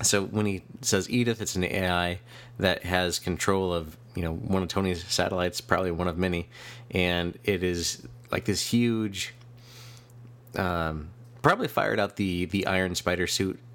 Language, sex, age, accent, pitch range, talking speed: English, male, 30-49, American, 90-120 Hz, 160 wpm